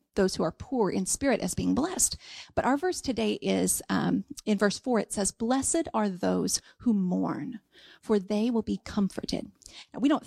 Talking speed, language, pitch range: 195 wpm, English, 195-245 Hz